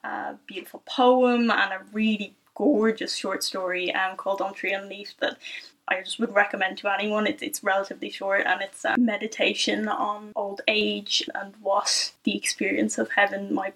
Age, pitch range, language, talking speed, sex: 10-29, 205-255 Hz, English, 175 wpm, female